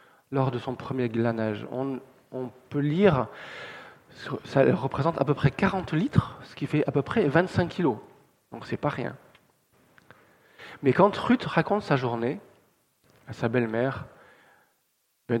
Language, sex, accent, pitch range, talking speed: French, male, French, 125-160 Hz, 150 wpm